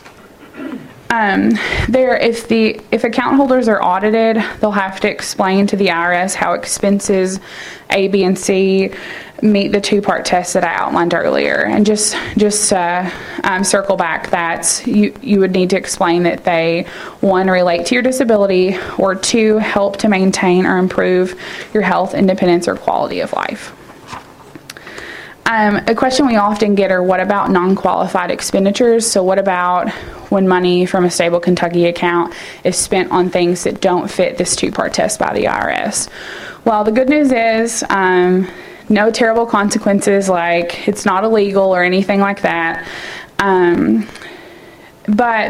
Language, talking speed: English, 155 wpm